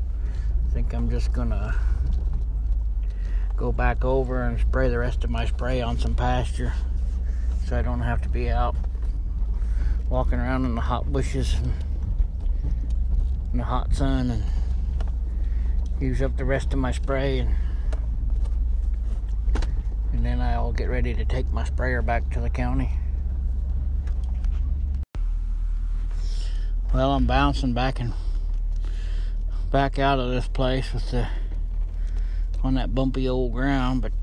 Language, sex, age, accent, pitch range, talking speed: English, male, 60-79, American, 65-110 Hz, 135 wpm